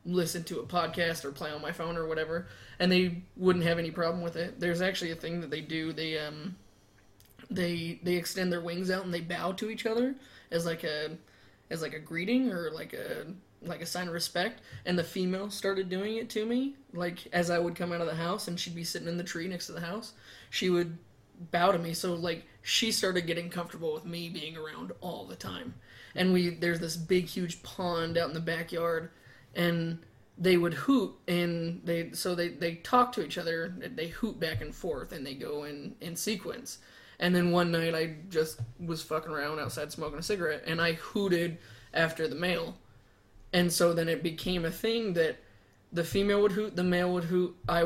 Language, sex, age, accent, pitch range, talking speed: English, male, 20-39, American, 165-180 Hz, 215 wpm